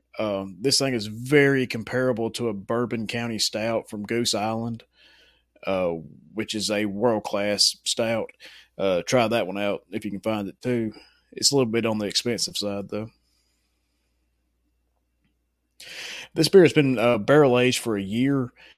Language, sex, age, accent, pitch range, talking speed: English, male, 30-49, American, 95-120 Hz, 165 wpm